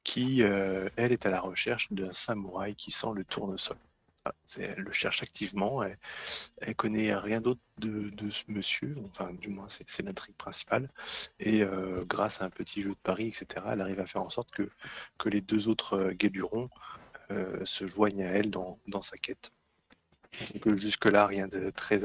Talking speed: 200 wpm